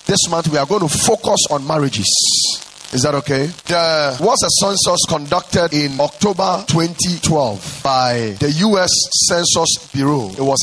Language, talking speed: English, 150 wpm